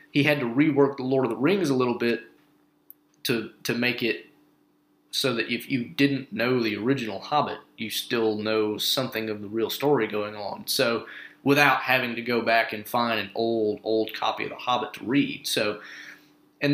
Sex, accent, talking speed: male, American, 195 wpm